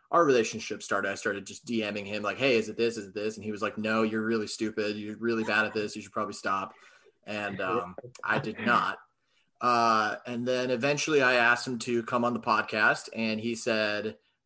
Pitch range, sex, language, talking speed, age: 105-120 Hz, male, English, 220 wpm, 30-49